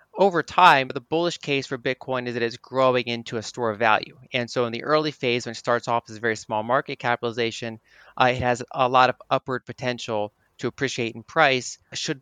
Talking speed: 220 wpm